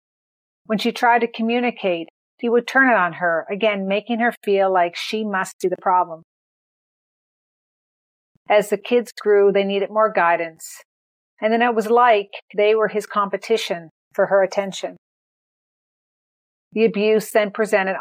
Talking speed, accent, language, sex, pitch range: 150 wpm, American, English, female, 185-220 Hz